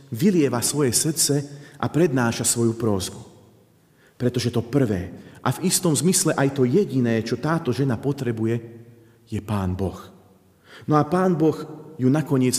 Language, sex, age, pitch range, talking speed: Slovak, male, 40-59, 115-155 Hz, 145 wpm